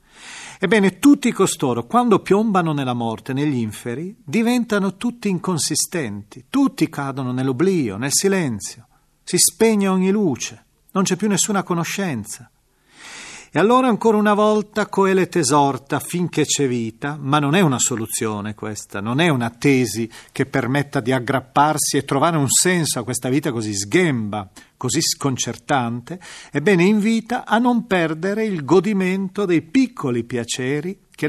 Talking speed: 140 wpm